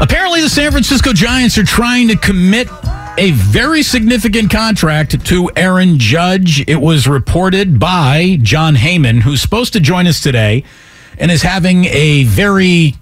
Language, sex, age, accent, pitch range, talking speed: English, male, 50-69, American, 120-175 Hz, 150 wpm